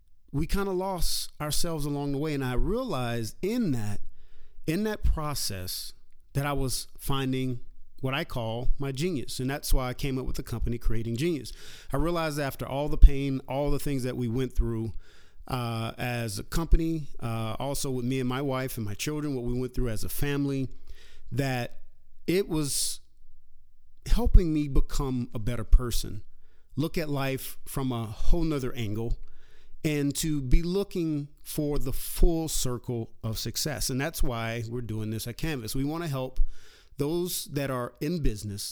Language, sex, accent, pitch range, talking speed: English, male, American, 120-150 Hz, 175 wpm